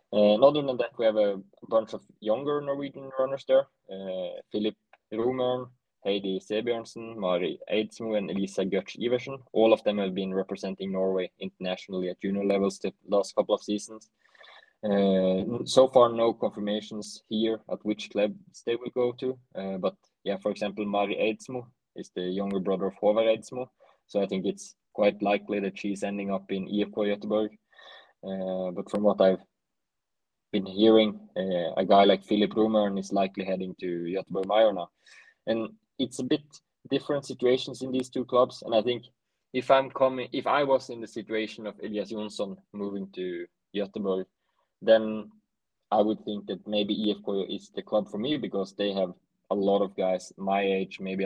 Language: English